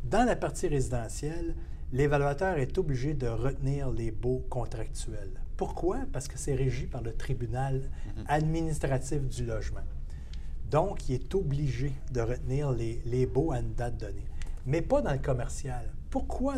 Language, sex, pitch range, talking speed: French, male, 110-160 Hz, 150 wpm